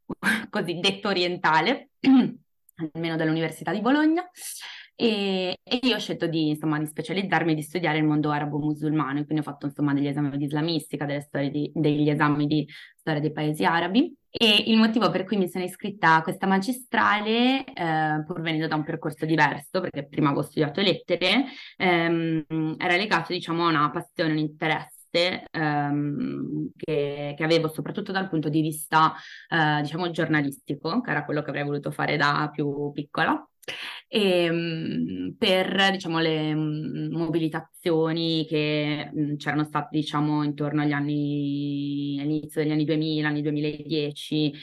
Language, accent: Italian, native